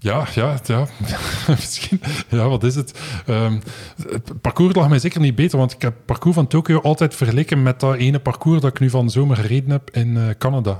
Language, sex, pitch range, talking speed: Dutch, male, 115-140 Hz, 215 wpm